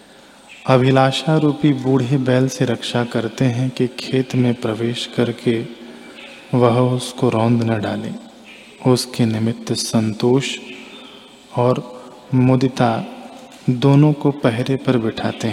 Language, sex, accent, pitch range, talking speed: Hindi, male, native, 115-130 Hz, 110 wpm